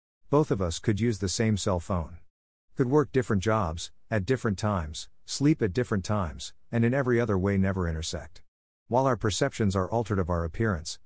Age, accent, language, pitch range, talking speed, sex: 50-69, American, English, 90-115 Hz, 190 wpm, male